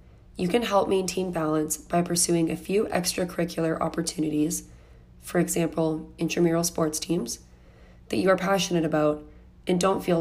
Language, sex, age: English, female, 20-39